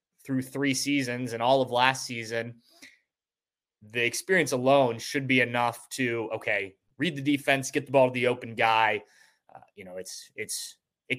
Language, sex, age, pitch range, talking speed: English, male, 20-39, 120-145 Hz, 170 wpm